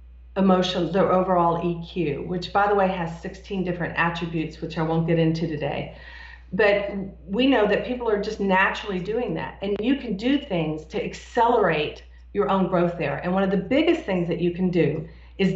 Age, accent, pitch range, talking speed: 40-59, American, 155-200 Hz, 195 wpm